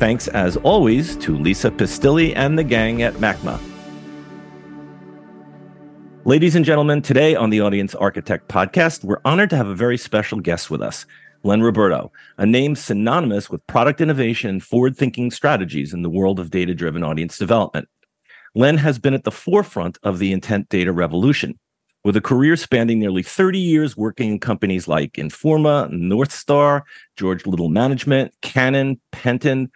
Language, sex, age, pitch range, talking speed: English, male, 40-59, 100-140 Hz, 155 wpm